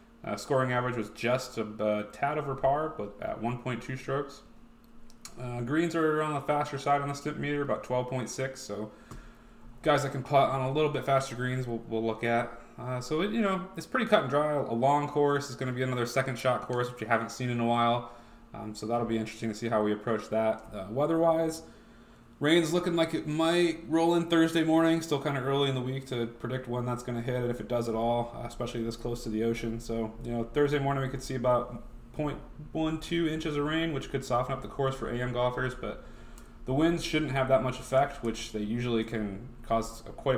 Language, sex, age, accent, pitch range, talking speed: English, male, 20-39, American, 115-145 Hz, 230 wpm